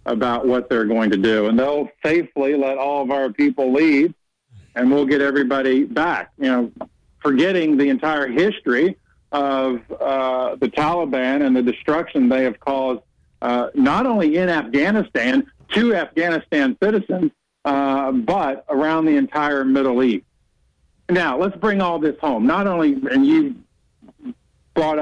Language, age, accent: English, 50-69, American